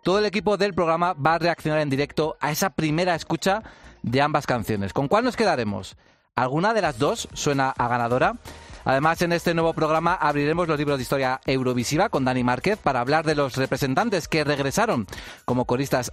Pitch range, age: 135-175 Hz, 30-49